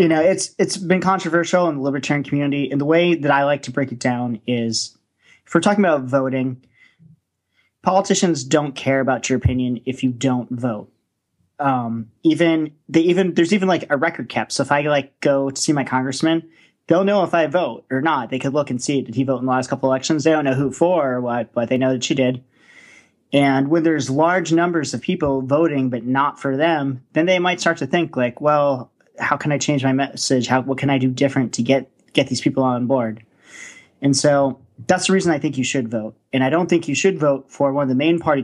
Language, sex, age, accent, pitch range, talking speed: English, male, 30-49, American, 130-155 Hz, 235 wpm